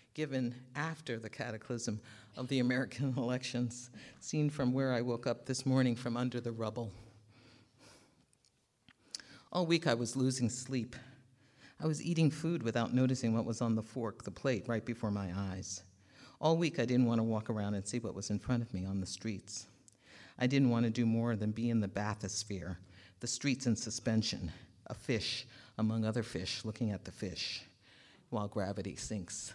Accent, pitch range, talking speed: American, 110-130 Hz, 180 wpm